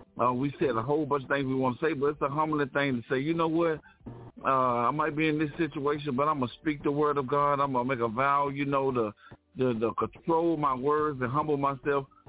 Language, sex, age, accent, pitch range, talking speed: English, male, 50-69, American, 125-145 Hz, 270 wpm